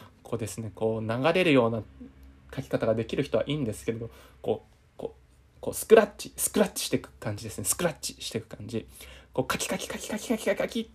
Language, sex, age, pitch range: Japanese, male, 20-39, 90-140 Hz